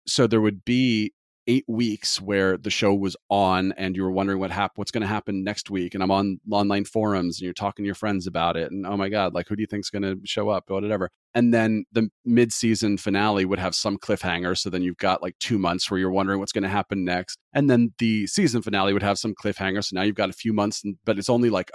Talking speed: 270 wpm